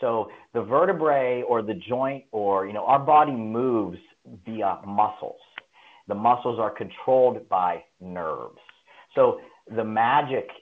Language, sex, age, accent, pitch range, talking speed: English, male, 40-59, American, 100-150 Hz, 130 wpm